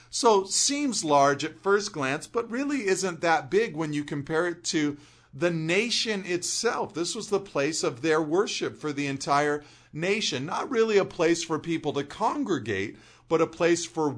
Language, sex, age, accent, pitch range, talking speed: English, male, 40-59, American, 130-170 Hz, 180 wpm